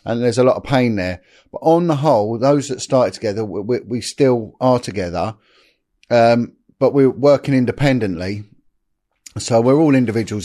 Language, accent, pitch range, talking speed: English, British, 105-125 Hz, 170 wpm